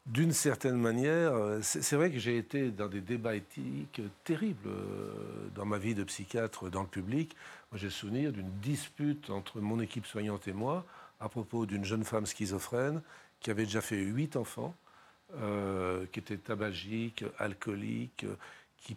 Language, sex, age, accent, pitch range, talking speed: French, male, 40-59, French, 100-125 Hz, 160 wpm